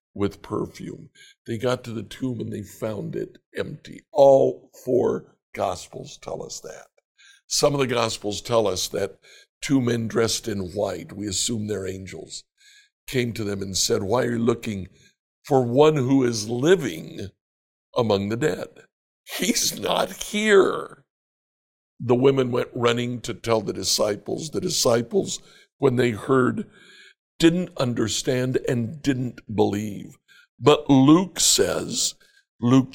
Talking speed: 140 wpm